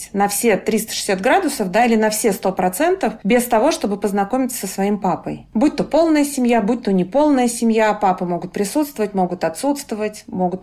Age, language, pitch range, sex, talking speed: 30-49, Russian, 195-250 Hz, female, 170 wpm